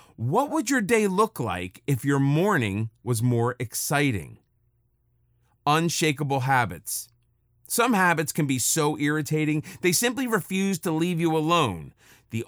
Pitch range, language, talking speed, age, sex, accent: 120-165 Hz, English, 135 wpm, 30-49, male, American